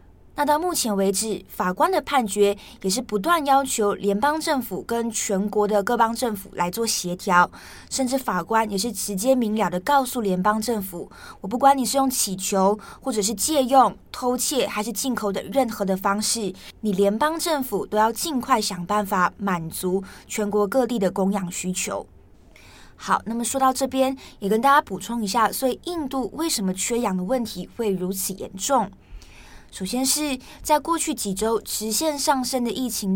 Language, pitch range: Chinese, 200-265 Hz